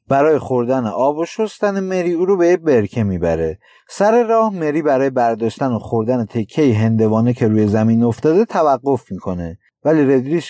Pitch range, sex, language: 115-175 Hz, male, Persian